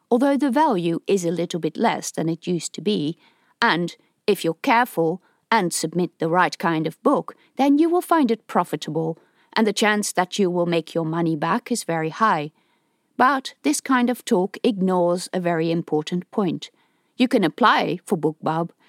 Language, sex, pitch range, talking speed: English, female, 160-230 Hz, 185 wpm